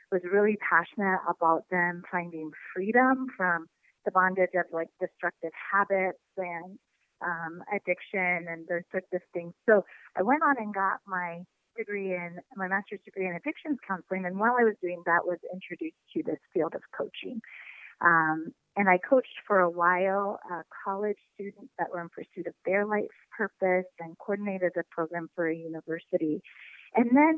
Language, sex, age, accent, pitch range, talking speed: English, female, 30-49, American, 175-205 Hz, 170 wpm